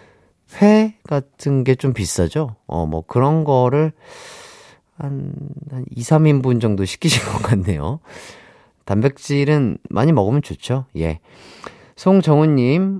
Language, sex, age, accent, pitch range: Korean, male, 30-49, native, 100-150 Hz